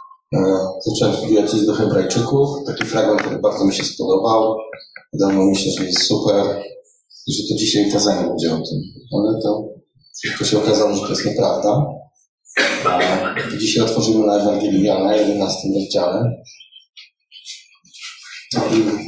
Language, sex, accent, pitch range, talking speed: Polish, male, native, 105-130 Hz, 135 wpm